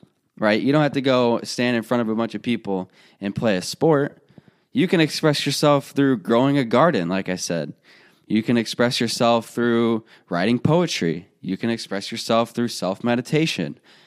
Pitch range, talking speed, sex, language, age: 100-135 Hz, 185 wpm, male, English, 20-39